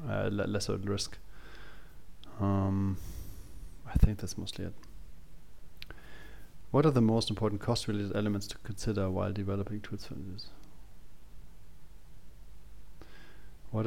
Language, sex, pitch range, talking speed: English, male, 100-110 Hz, 105 wpm